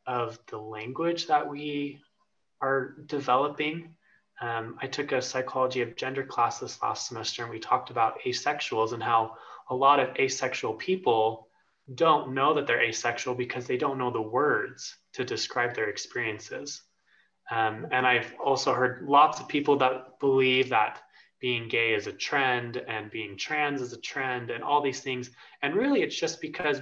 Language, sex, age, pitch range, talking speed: English, male, 20-39, 120-145 Hz, 170 wpm